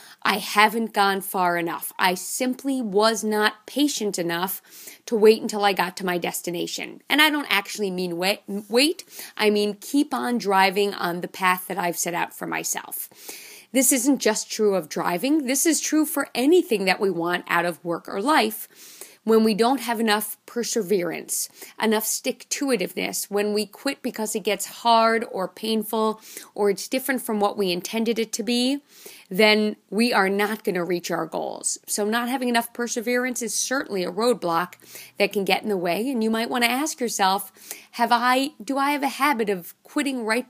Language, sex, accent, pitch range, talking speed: English, female, American, 200-255 Hz, 190 wpm